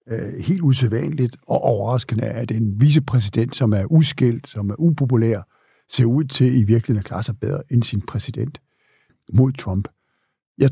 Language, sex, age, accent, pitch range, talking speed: Danish, male, 60-79, native, 115-140 Hz, 155 wpm